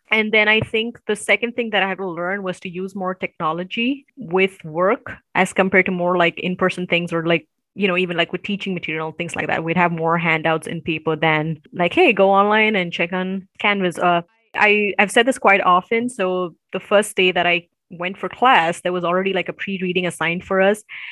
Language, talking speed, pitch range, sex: English, 220 wpm, 175-220 Hz, female